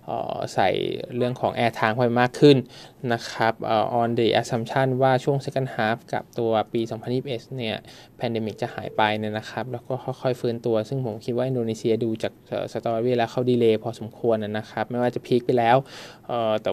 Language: Thai